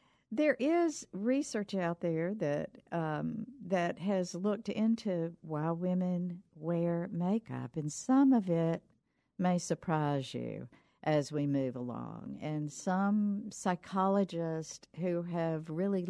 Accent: American